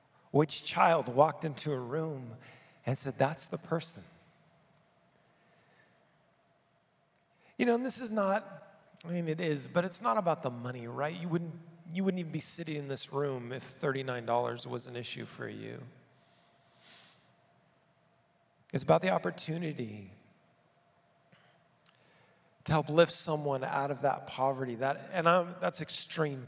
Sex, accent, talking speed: male, American, 140 wpm